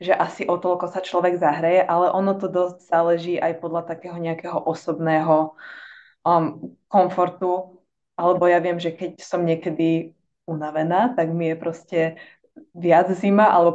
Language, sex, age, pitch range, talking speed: Slovak, female, 20-39, 165-195 Hz, 150 wpm